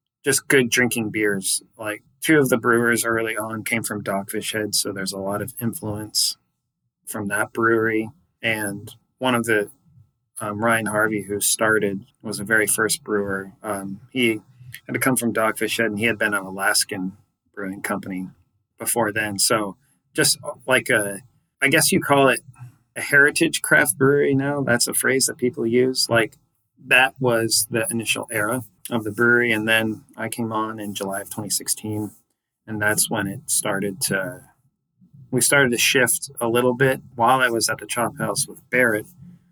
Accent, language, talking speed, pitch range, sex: American, English, 175 wpm, 105-125 Hz, male